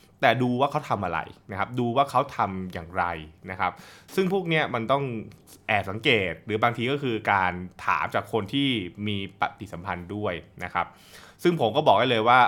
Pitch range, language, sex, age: 95-125 Hz, Thai, male, 20-39